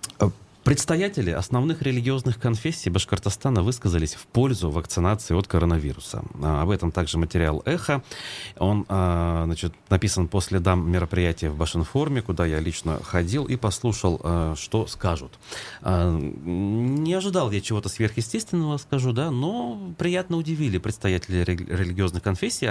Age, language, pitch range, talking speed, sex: 30-49, Russian, 90-120 Hz, 115 wpm, male